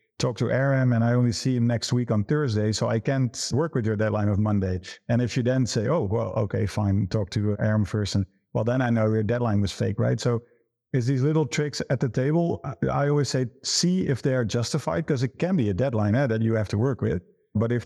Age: 50-69